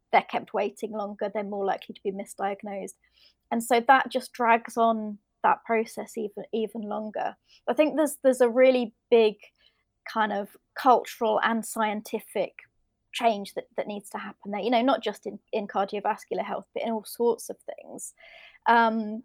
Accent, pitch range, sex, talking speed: British, 205-235 Hz, female, 170 wpm